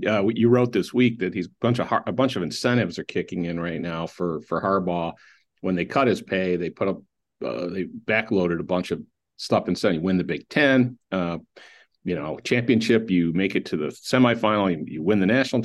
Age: 50-69